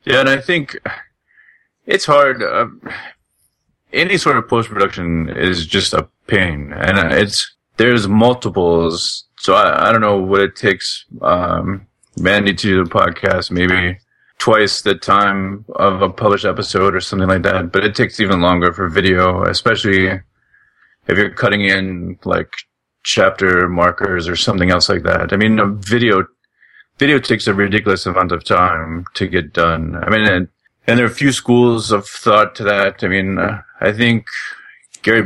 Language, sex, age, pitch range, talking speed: English, male, 30-49, 90-110 Hz, 170 wpm